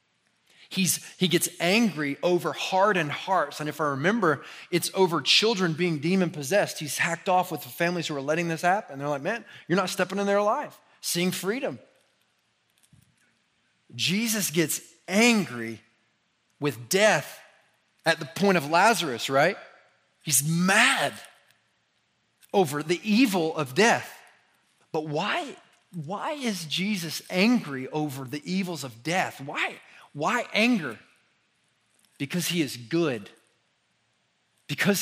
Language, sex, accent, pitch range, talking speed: English, male, American, 145-195 Hz, 130 wpm